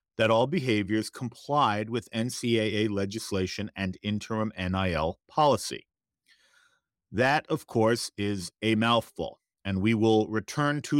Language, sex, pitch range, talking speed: English, male, 105-140 Hz, 120 wpm